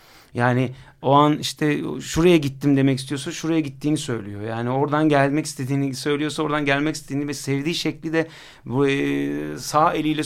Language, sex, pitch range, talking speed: Turkish, male, 130-155 Hz, 150 wpm